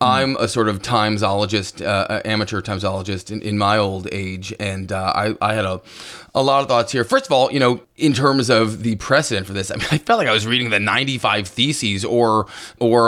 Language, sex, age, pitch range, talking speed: English, male, 20-39, 110-130 Hz, 225 wpm